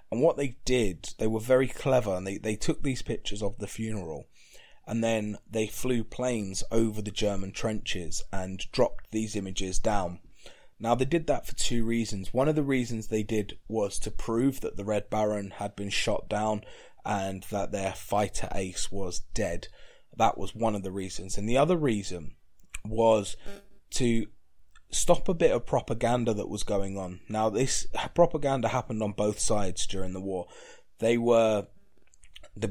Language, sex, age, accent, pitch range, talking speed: English, male, 20-39, British, 100-115 Hz, 175 wpm